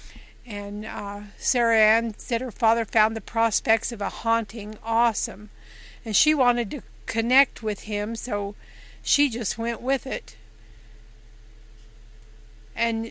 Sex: female